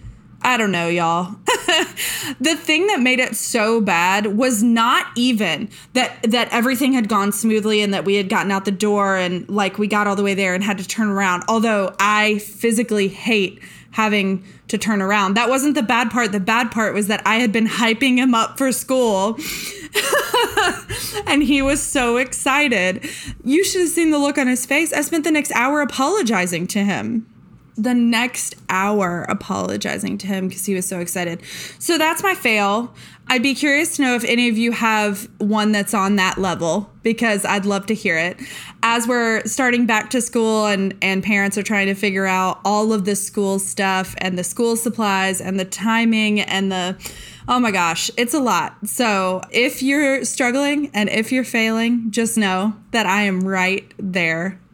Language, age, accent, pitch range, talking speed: English, 20-39, American, 195-245 Hz, 190 wpm